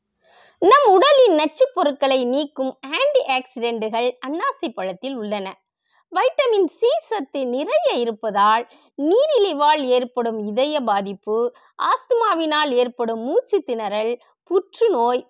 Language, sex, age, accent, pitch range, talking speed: Tamil, female, 20-39, native, 240-325 Hz, 95 wpm